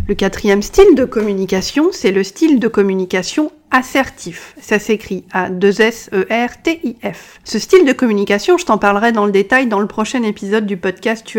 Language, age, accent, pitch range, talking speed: French, 40-59, French, 200-255 Hz, 190 wpm